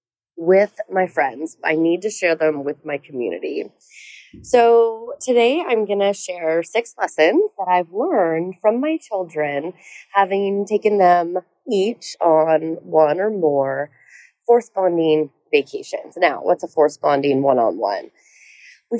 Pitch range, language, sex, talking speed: 160-245 Hz, English, female, 130 wpm